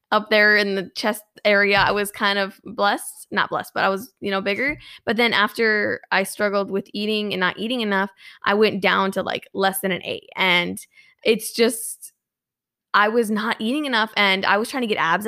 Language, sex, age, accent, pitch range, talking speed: English, female, 20-39, American, 195-245 Hz, 210 wpm